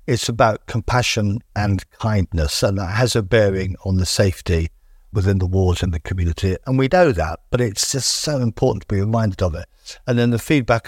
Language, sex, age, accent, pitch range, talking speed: English, male, 50-69, British, 95-120 Hz, 205 wpm